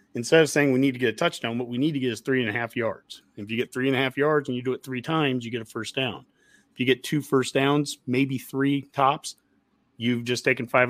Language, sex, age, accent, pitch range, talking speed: English, male, 40-59, American, 120-145 Hz, 290 wpm